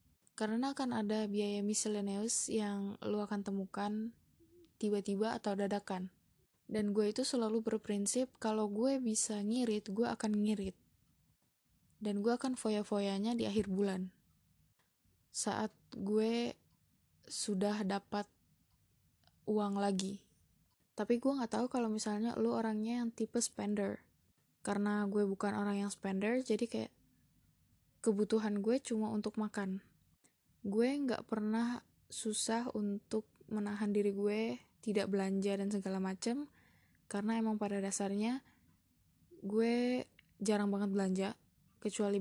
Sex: female